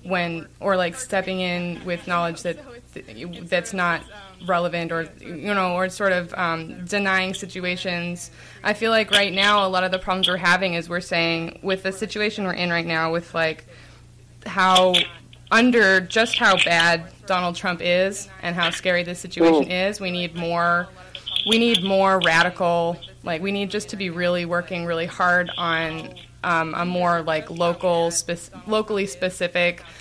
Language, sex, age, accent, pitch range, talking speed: English, female, 20-39, American, 170-195 Hz, 170 wpm